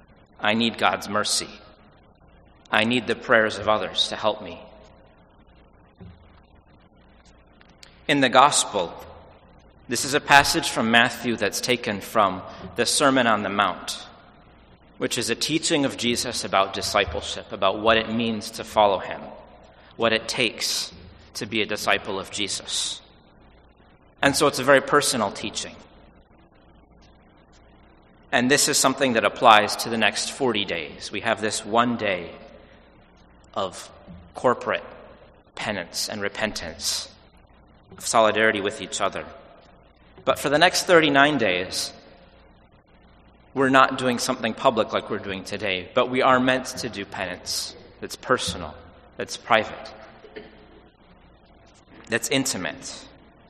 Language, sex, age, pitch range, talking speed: English, male, 40-59, 95-120 Hz, 130 wpm